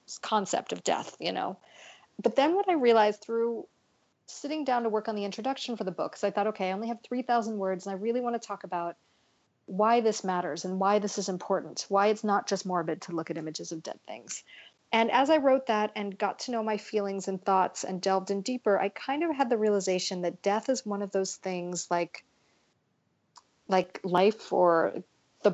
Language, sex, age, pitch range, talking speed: English, female, 40-59, 190-230 Hz, 220 wpm